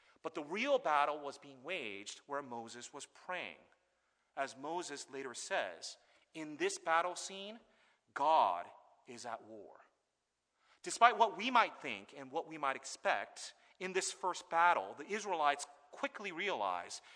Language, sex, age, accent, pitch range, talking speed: English, male, 40-59, American, 145-200 Hz, 145 wpm